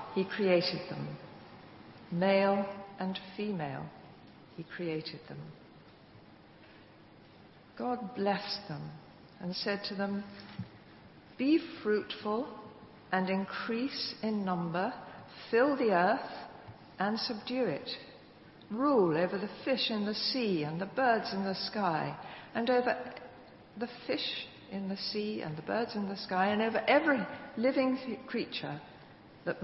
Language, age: English, 60-79